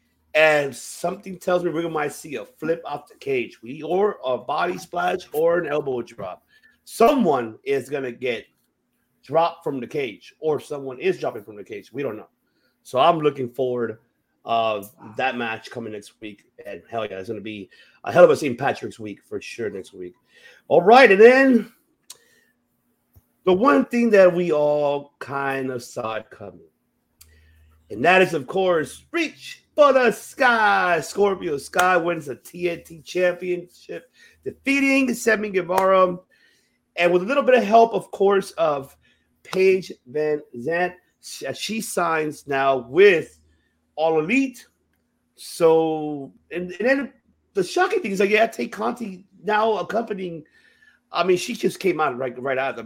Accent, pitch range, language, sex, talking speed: American, 135-230 Hz, English, male, 160 wpm